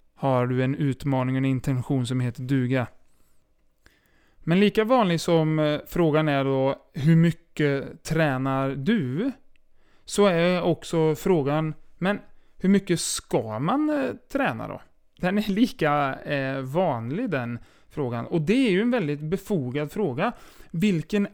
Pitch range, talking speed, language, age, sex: 135-180 Hz, 130 wpm, Swedish, 30-49, male